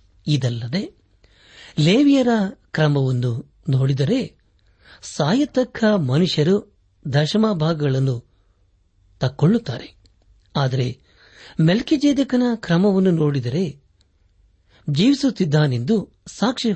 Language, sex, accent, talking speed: Kannada, male, native, 55 wpm